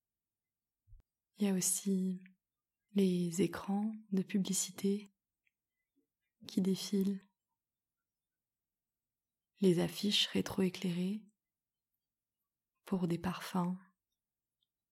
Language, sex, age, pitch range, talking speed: French, female, 20-39, 180-205 Hz, 65 wpm